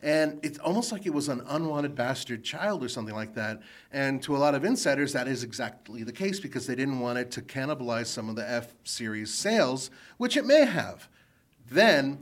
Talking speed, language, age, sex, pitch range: 205 wpm, English, 40-59, male, 125-170 Hz